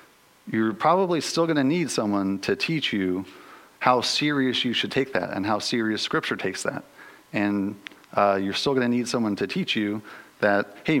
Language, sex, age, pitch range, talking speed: English, male, 40-59, 100-115 Hz, 190 wpm